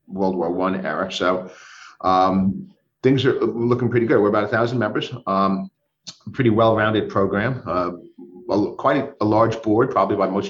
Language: English